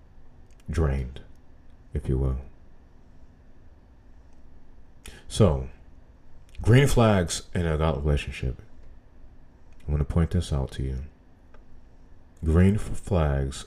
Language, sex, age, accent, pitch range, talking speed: English, male, 40-59, American, 70-85 Hz, 90 wpm